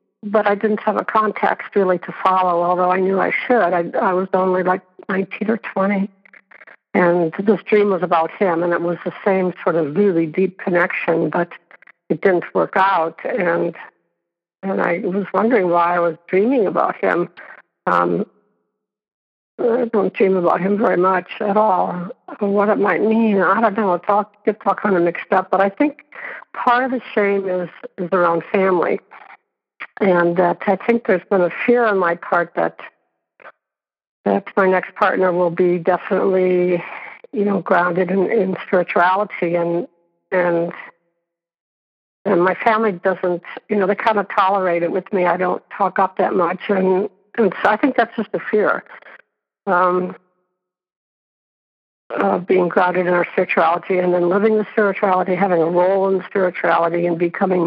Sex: female